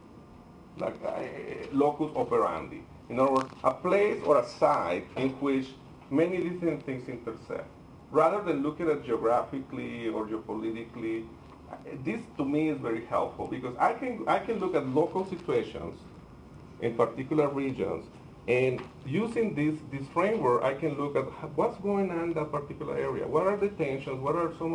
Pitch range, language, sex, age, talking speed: 125-165 Hz, English, male, 40-59, 160 wpm